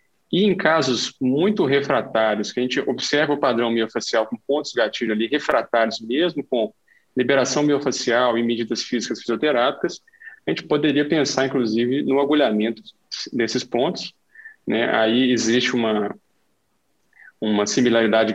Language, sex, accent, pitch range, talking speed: Portuguese, male, Brazilian, 115-145 Hz, 135 wpm